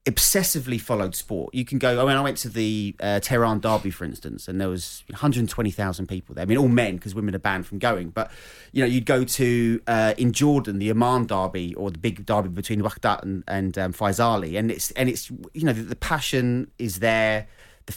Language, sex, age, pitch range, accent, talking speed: English, male, 30-49, 100-135 Hz, British, 225 wpm